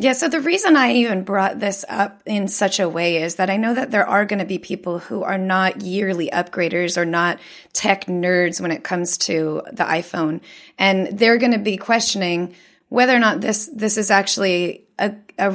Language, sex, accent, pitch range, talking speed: English, female, American, 180-230 Hz, 210 wpm